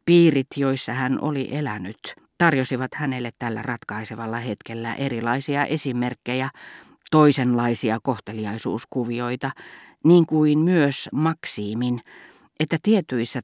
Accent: native